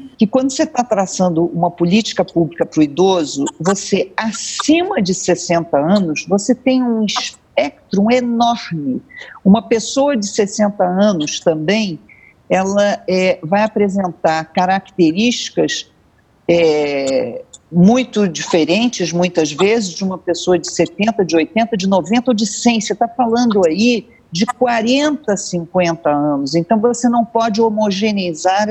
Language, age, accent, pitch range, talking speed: Portuguese, 50-69, Brazilian, 165-225 Hz, 130 wpm